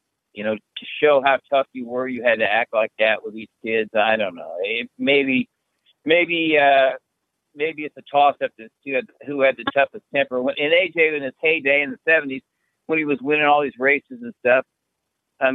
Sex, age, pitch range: male, 60-79, 140-195 Hz